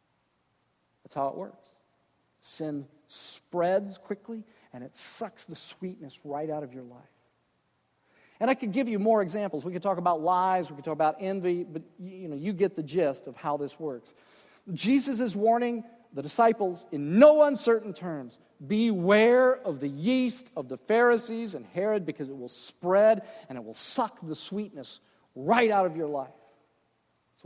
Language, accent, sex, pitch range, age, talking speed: English, American, male, 150-205 Hz, 40-59, 170 wpm